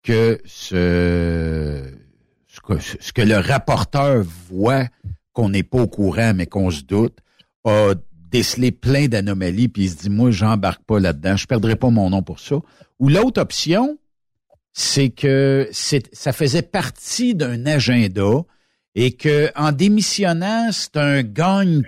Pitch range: 105-150 Hz